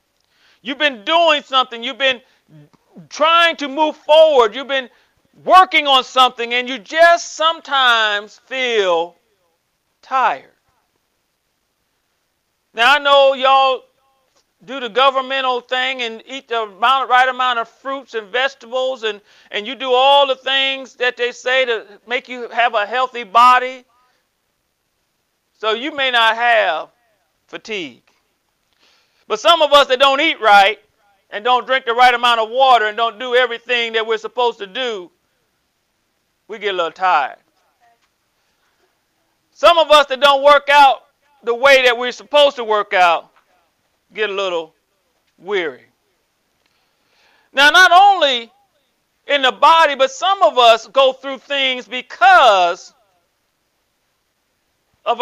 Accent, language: American, English